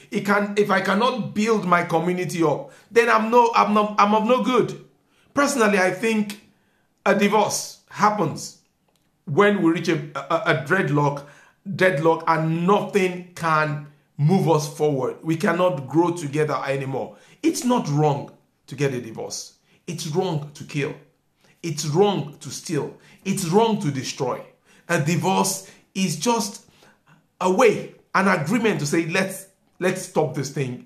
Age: 50-69